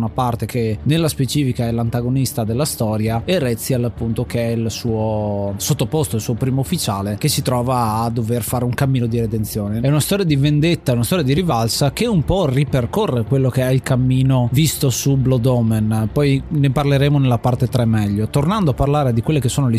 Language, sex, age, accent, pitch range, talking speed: Italian, male, 30-49, native, 115-140 Hz, 205 wpm